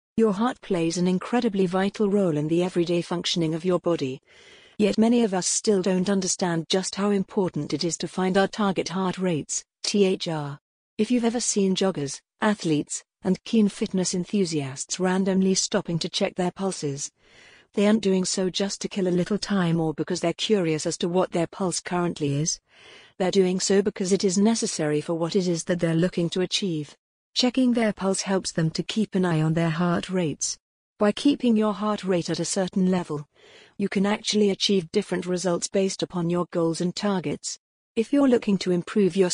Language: English